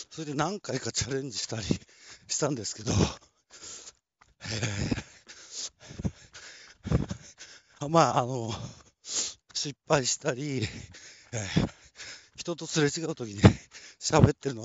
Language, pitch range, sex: Japanese, 110-140 Hz, male